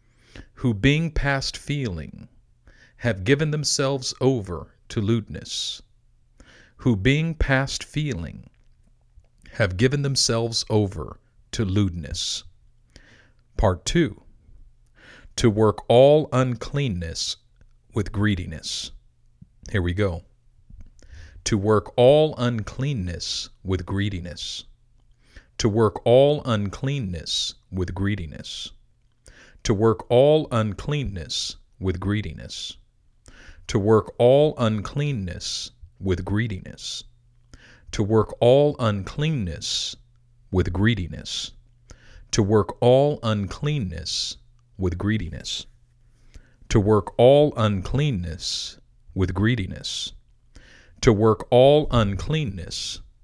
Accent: American